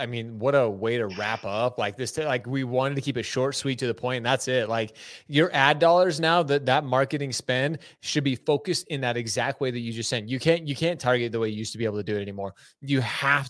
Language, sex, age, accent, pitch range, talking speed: English, male, 20-39, American, 140-230 Hz, 280 wpm